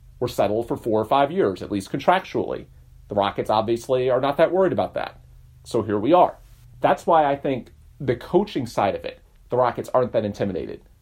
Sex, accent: male, American